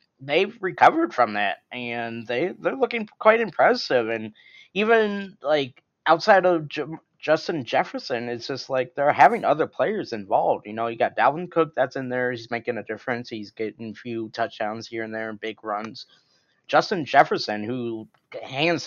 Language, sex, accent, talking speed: English, male, American, 170 wpm